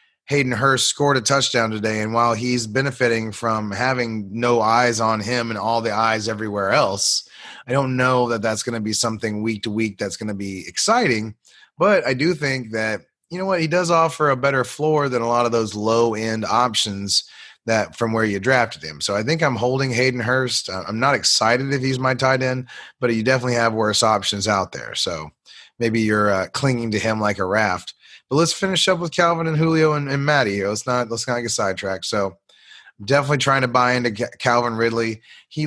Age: 30-49